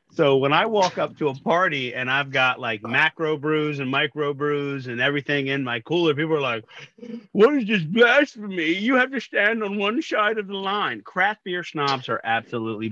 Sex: male